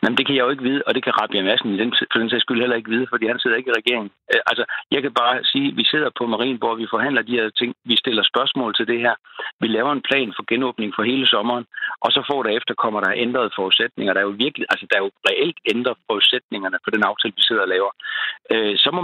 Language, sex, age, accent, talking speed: Danish, male, 60-79, native, 260 wpm